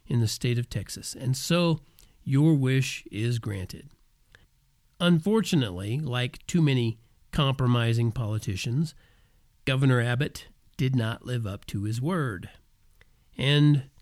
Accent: American